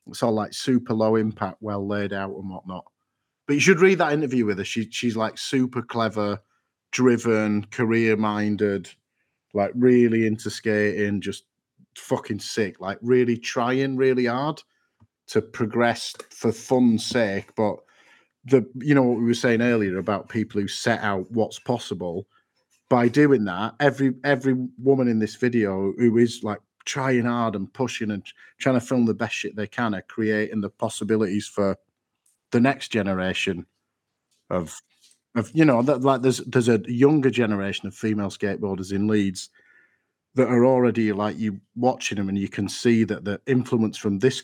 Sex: male